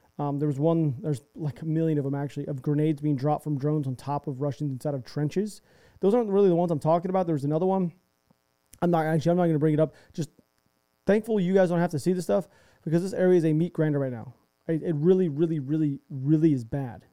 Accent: American